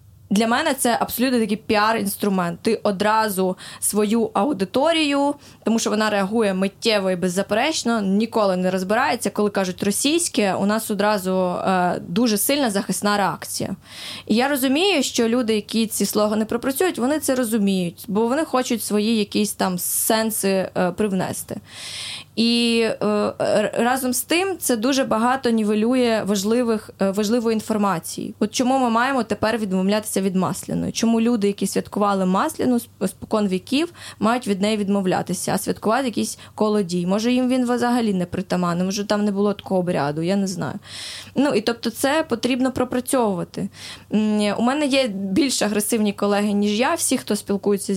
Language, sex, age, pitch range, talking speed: Ukrainian, female, 20-39, 200-240 Hz, 145 wpm